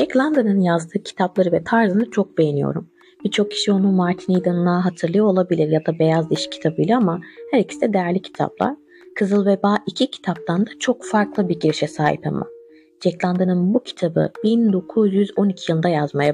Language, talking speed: Turkish, 160 wpm